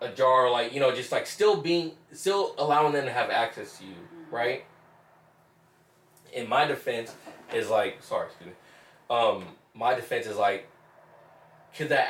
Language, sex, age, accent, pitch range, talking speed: English, male, 20-39, American, 115-155 Hz, 160 wpm